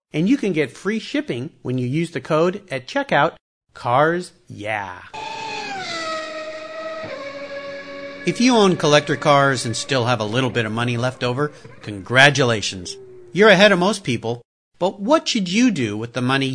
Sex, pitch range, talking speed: male, 125-205 Hz, 160 wpm